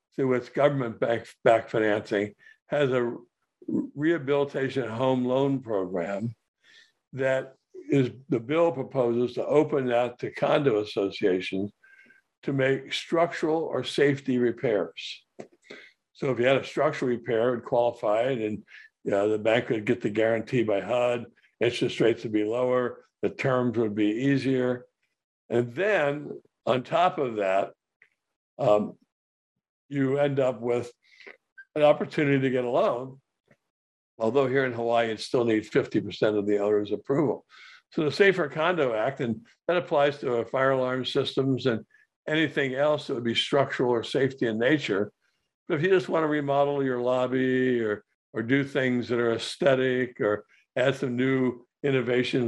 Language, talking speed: English, 150 wpm